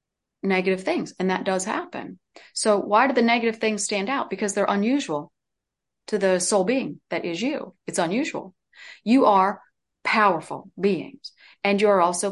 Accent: American